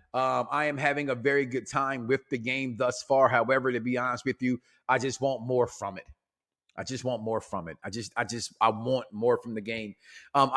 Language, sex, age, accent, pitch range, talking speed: English, male, 30-49, American, 115-145 Hz, 240 wpm